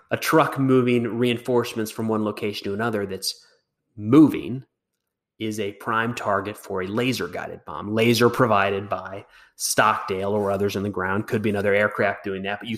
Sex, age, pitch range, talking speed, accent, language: male, 30-49, 100-125 Hz, 170 wpm, American, English